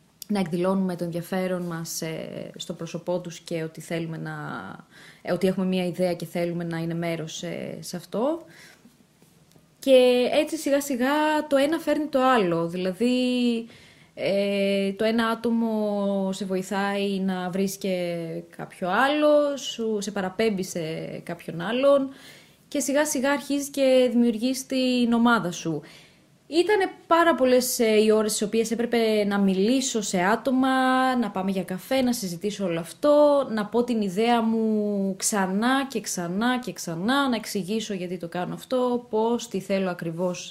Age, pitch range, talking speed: 20-39, 185-265 Hz, 150 wpm